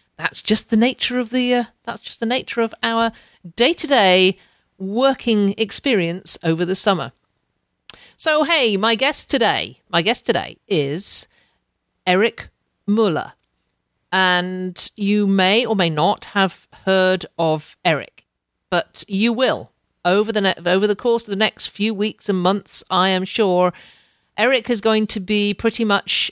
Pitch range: 175-220 Hz